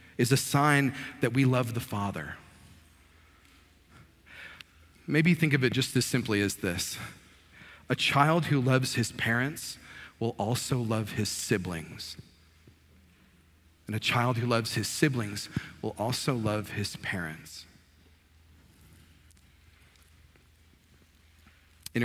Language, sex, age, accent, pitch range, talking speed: English, male, 40-59, American, 85-135 Hz, 110 wpm